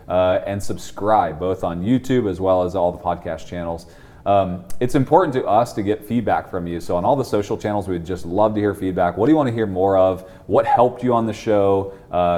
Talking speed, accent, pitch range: 240 wpm, American, 90-110 Hz